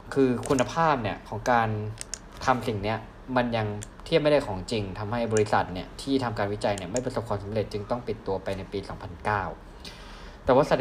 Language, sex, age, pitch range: Thai, male, 20-39, 100-125 Hz